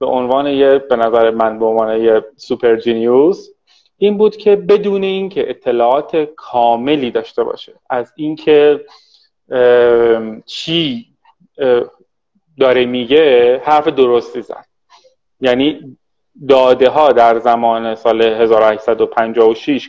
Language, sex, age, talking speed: Persian, male, 30-49, 110 wpm